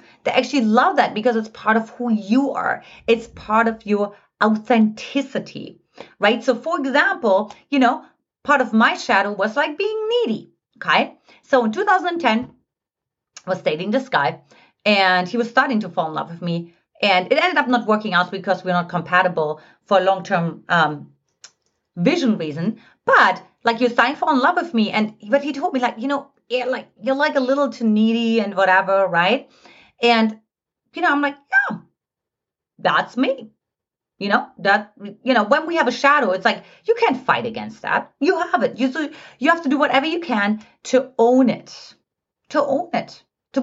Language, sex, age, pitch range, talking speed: English, female, 30-49, 205-280 Hz, 190 wpm